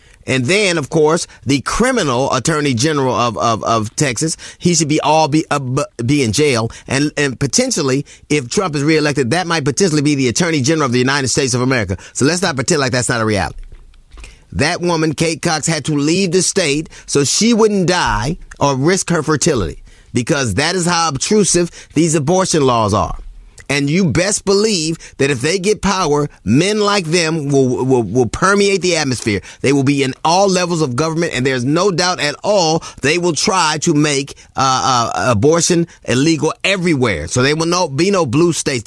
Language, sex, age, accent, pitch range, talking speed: English, male, 30-49, American, 135-175 Hz, 195 wpm